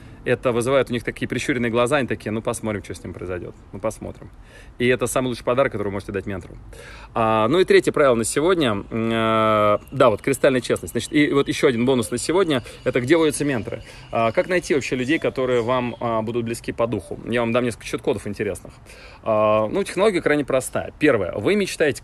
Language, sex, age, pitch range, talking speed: Russian, male, 30-49, 115-150 Hz, 210 wpm